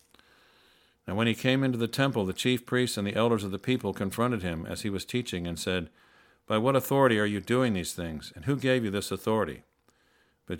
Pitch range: 95-120 Hz